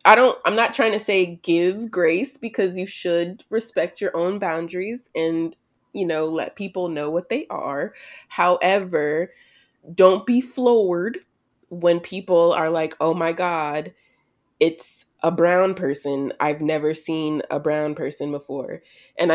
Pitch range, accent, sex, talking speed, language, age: 150-180 Hz, American, female, 150 wpm, English, 20-39